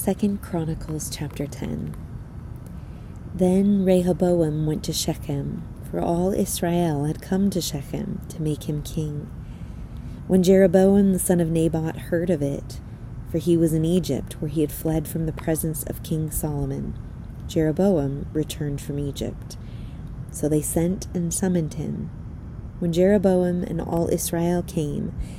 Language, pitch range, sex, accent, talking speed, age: English, 155-185 Hz, female, American, 140 wpm, 30-49